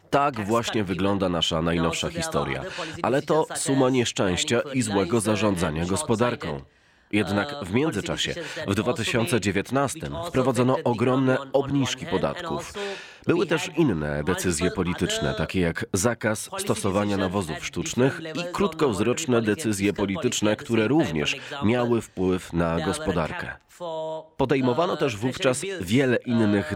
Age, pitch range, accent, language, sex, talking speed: 30-49, 100-135 Hz, native, Polish, male, 110 wpm